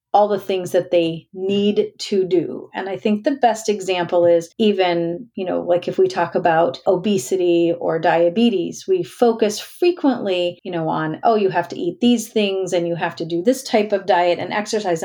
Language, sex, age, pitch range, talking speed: English, female, 40-59, 175-220 Hz, 200 wpm